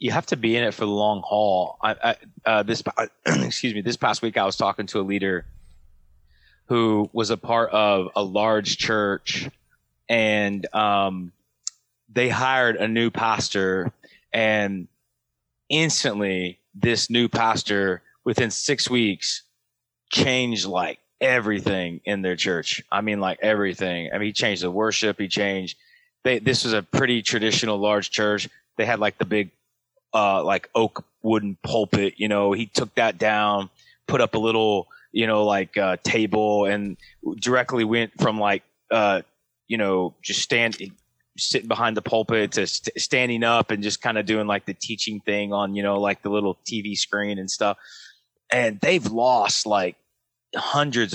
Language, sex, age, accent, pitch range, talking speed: English, male, 30-49, American, 100-115 Hz, 160 wpm